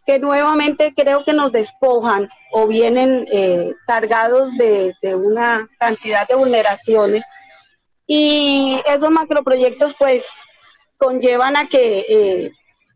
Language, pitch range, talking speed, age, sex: Spanish, 235-290 Hz, 110 wpm, 30-49, female